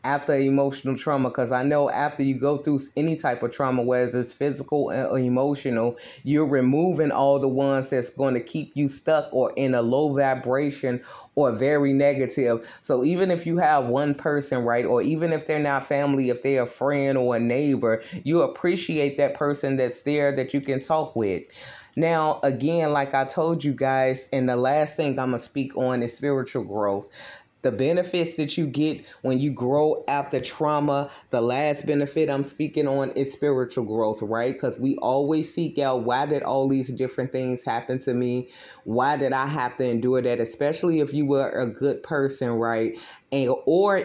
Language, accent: English, American